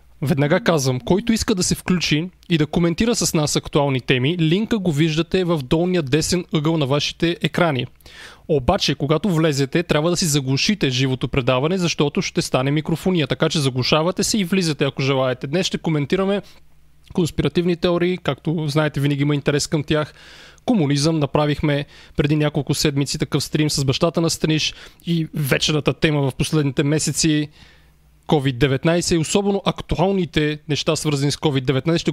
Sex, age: male, 30-49